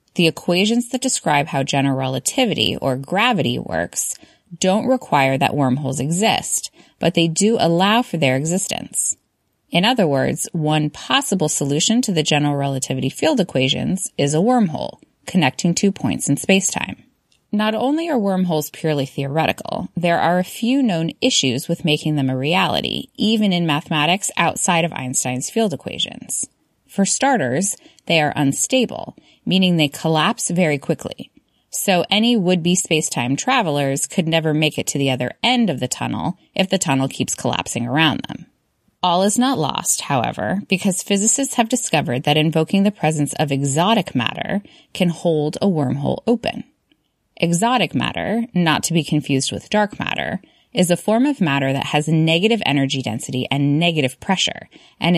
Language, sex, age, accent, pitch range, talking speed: English, female, 20-39, American, 145-205 Hz, 155 wpm